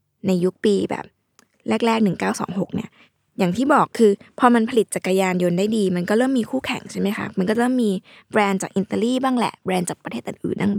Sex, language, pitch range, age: female, Thai, 185-240 Hz, 20-39